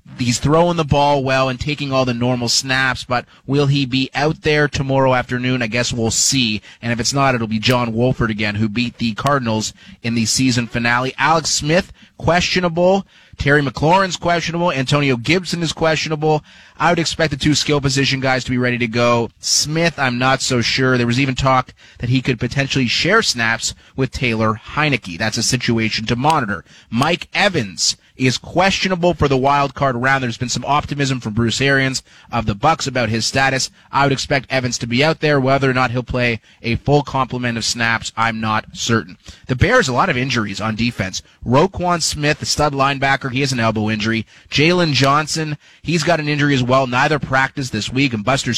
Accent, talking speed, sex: American, 200 wpm, male